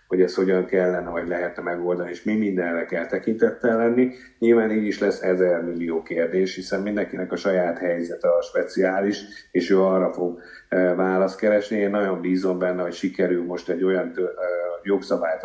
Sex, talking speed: male, 175 wpm